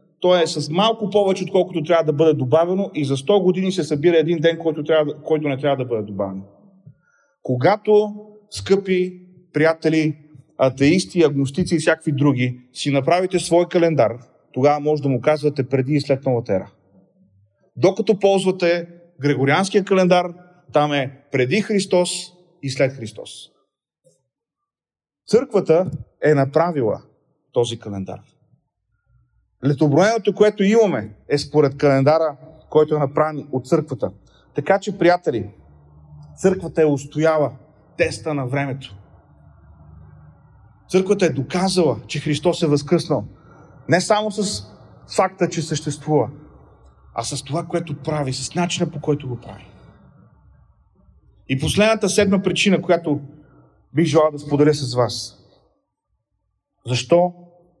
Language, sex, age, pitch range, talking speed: Bulgarian, male, 30-49, 135-175 Hz, 125 wpm